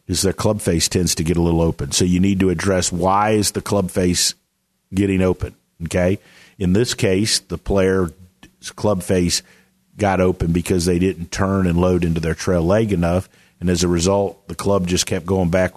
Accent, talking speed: American, 200 wpm